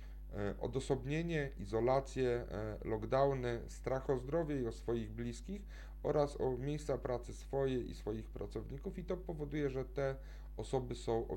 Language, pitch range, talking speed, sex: Polish, 105-135 Hz, 135 wpm, male